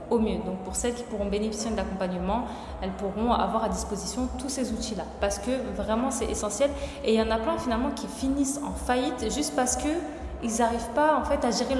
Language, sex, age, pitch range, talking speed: French, female, 20-39, 205-250 Hz, 230 wpm